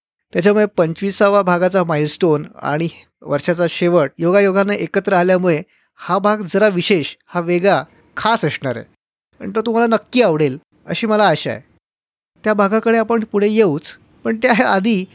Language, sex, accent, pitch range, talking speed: Marathi, male, native, 145-195 Hz, 145 wpm